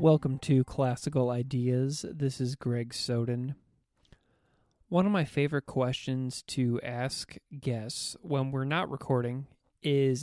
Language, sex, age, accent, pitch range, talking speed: English, male, 20-39, American, 120-140 Hz, 125 wpm